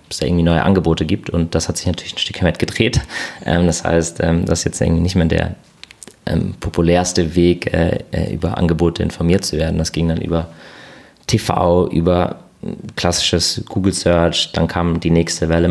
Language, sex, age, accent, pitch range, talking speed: German, male, 20-39, German, 80-90 Hz, 170 wpm